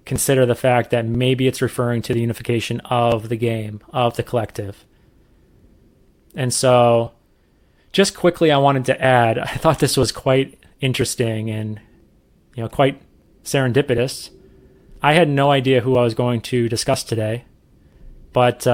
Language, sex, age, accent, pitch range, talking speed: English, male, 30-49, American, 120-135 Hz, 150 wpm